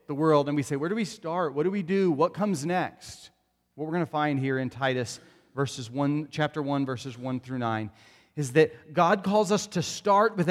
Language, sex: English, male